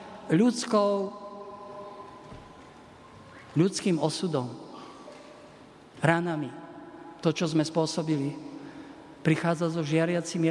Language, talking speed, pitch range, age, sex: Slovak, 65 wpm, 160-195 Hz, 50-69, male